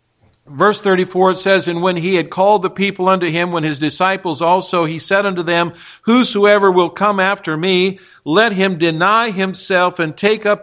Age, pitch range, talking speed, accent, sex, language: 50-69, 170-200 Hz, 180 wpm, American, male, English